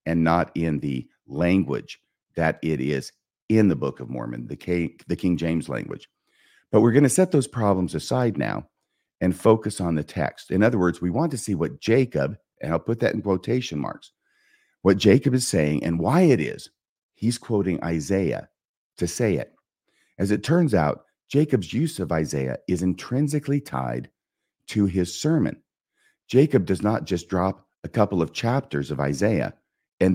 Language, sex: English, male